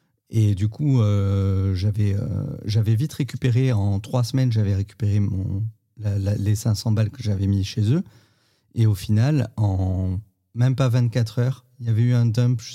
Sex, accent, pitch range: male, French, 105-120 Hz